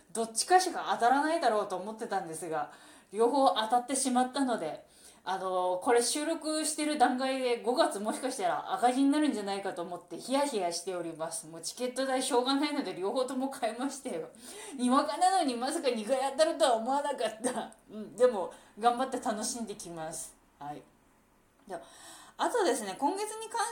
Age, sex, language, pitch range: 20-39, female, Japanese, 175-265 Hz